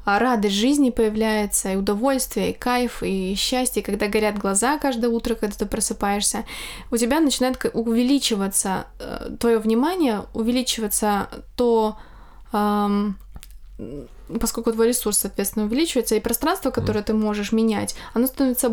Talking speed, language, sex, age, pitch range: 120 wpm, Russian, female, 20-39, 215-245 Hz